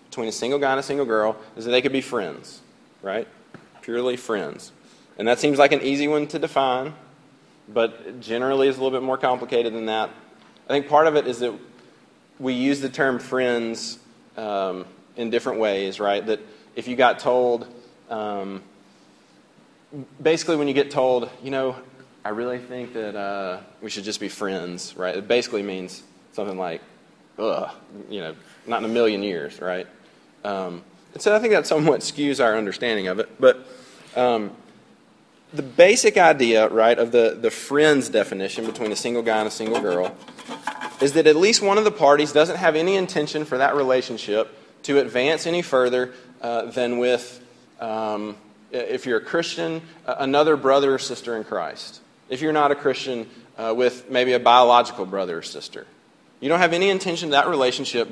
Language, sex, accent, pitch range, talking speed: English, male, American, 115-145 Hz, 185 wpm